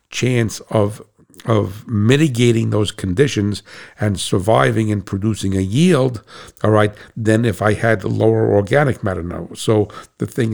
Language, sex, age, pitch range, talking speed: English, male, 60-79, 105-120 Hz, 140 wpm